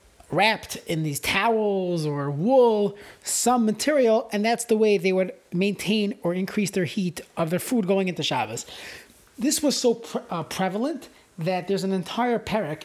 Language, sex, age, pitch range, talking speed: English, male, 30-49, 175-220 Hz, 170 wpm